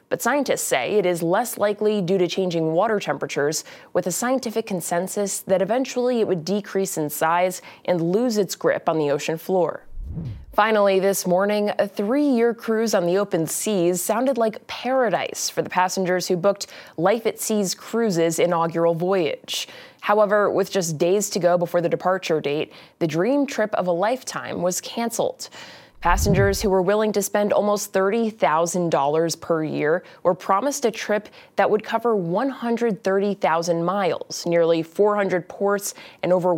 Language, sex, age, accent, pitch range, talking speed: English, female, 20-39, American, 175-220 Hz, 160 wpm